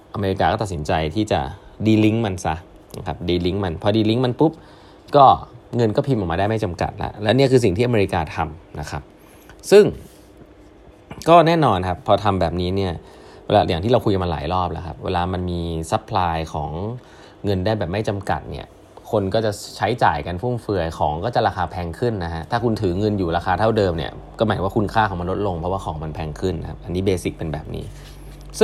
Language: Thai